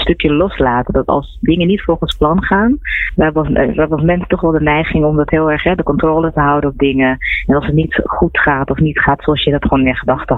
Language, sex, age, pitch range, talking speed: Dutch, female, 20-39, 135-165 Hz, 255 wpm